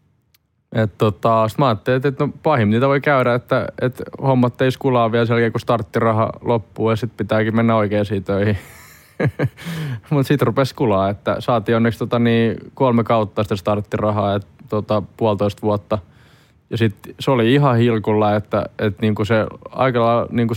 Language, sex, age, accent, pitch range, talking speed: Finnish, male, 20-39, native, 105-120 Hz, 160 wpm